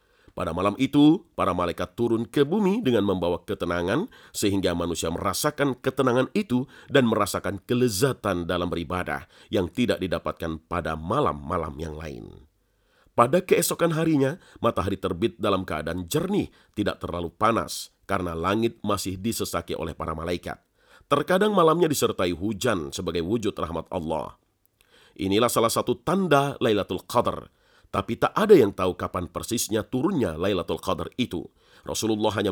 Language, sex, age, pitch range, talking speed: Indonesian, male, 40-59, 90-130 Hz, 135 wpm